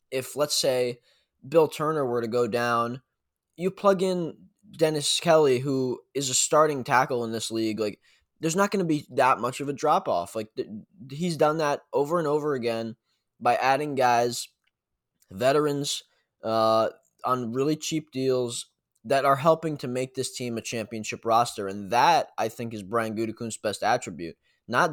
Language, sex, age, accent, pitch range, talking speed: English, male, 20-39, American, 110-135 Hz, 170 wpm